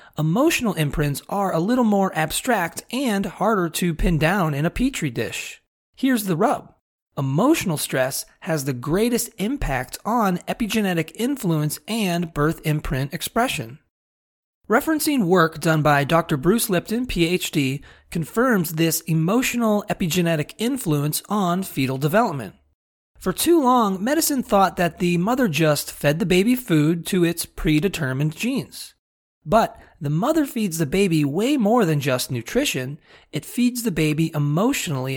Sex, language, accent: male, English, American